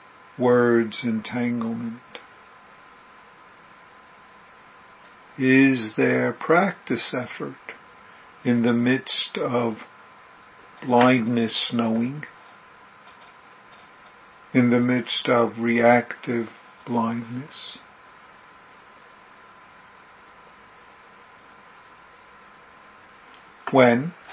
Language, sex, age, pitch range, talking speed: English, male, 50-69, 115-125 Hz, 45 wpm